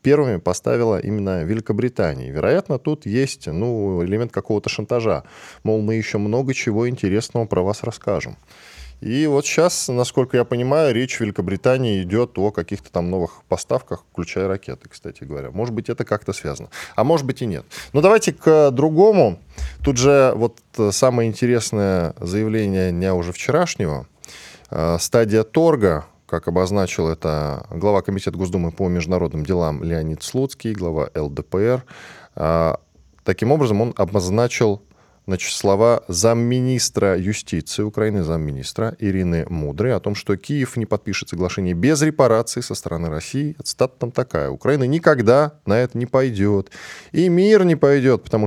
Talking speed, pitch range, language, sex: 140 wpm, 95-125 Hz, Russian, male